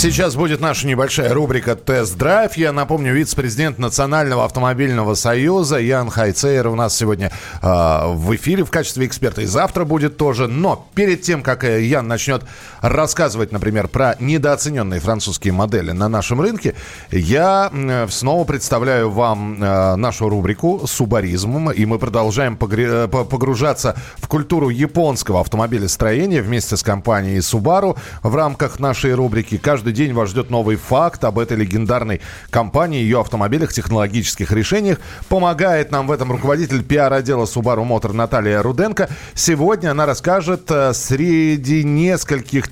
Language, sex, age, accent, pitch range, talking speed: Russian, male, 40-59, native, 110-150 Hz, 135 wpm